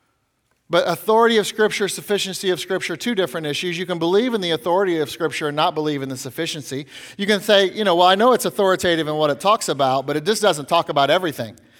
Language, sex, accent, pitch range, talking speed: English, male, American, 135-175 Hz, 235 wpm